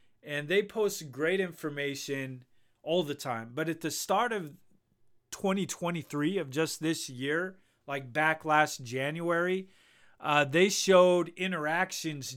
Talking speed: 125 wpm